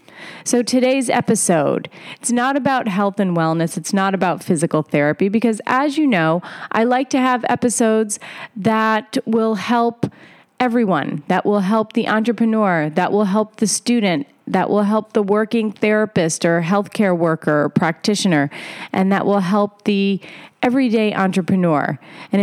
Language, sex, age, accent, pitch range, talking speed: English, female, 30-49, American, 185-235 Hz, 150 wpm